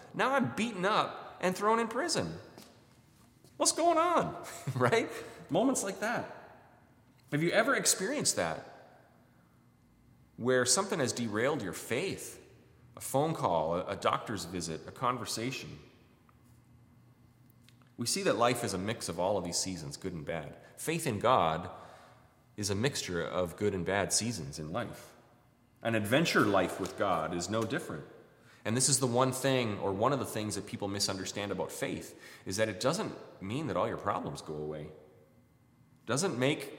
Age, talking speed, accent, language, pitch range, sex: 30-49, 165 wpm, American, English, 105-130 Hz, male